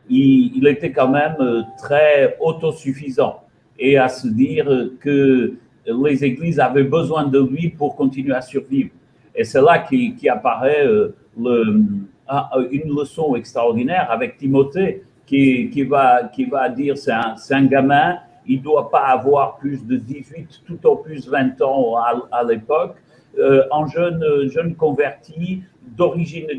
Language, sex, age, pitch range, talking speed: French, male, 60-79, 135-210 Hz, 145 wpm